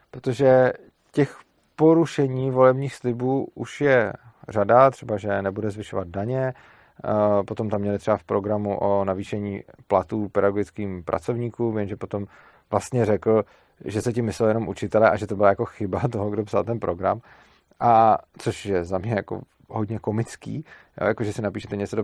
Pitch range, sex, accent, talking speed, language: 100-120 Hz, male, native, 160 wpm, Czech